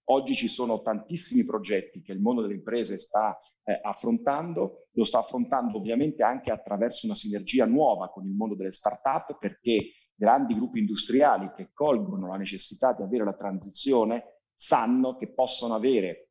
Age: 40-59